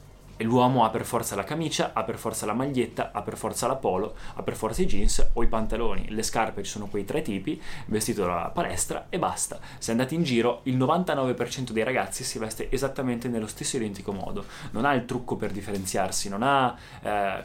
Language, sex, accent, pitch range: Italian, male, native, 110-140 Hz